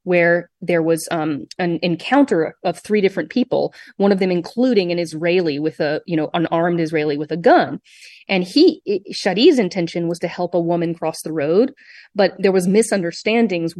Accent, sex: American, female